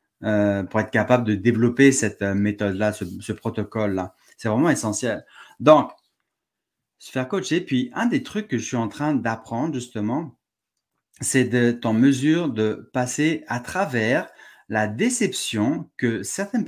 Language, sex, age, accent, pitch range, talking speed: French, male, 30-49, French, 105-150 Hz, 150 wpm